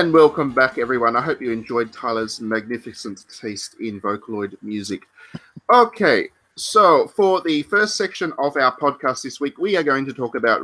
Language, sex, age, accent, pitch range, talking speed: English, male, 30-49, Australian, 105-130 Hz, 175 wpm